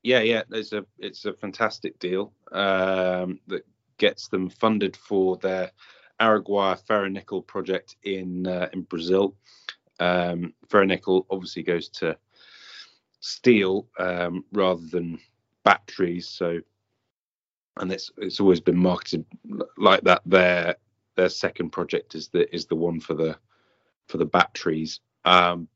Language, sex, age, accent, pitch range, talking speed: English, male, 30-49, British, 85-95 Hz, 135 wpm